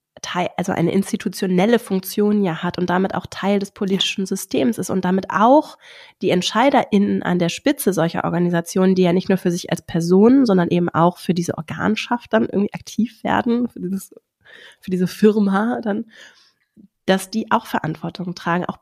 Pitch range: 180-225 Hz